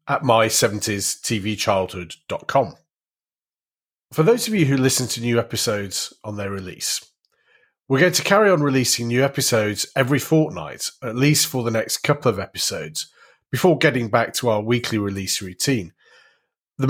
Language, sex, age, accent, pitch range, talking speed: English, male, 30-49, British, 110-145 Hz, 155 wpm